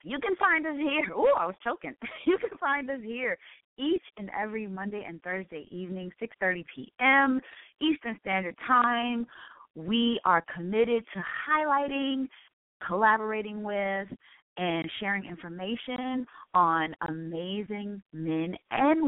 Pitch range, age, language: 180-255 Hz, 30-49, English